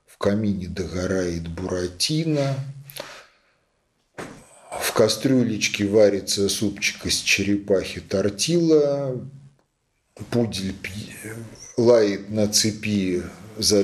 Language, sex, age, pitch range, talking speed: Russian, male, 40-59, 95-135 Hz, 75 wpm